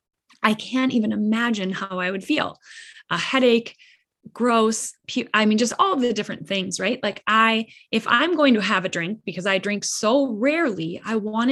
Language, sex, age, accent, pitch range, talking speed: English, female, 20-39, American, 195-260 Hz, 195 wpm